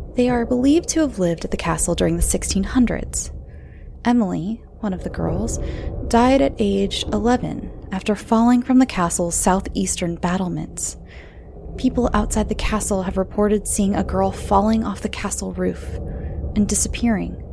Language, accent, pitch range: English, American, 165-235 Hz